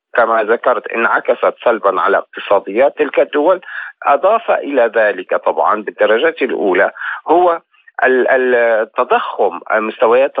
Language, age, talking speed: Arabic, 50-69, 100 wpm